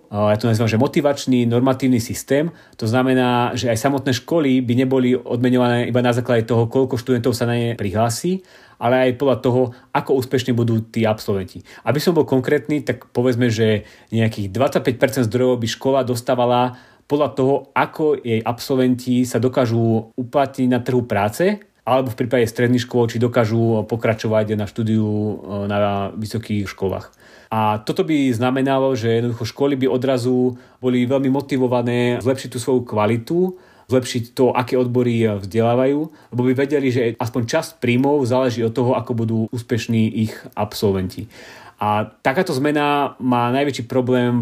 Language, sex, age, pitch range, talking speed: Slovak, male, 30-49, 115-130 Hz, 155 wpm